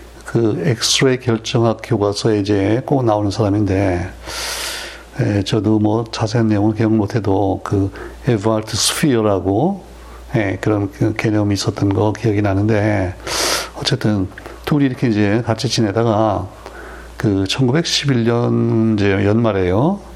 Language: Korean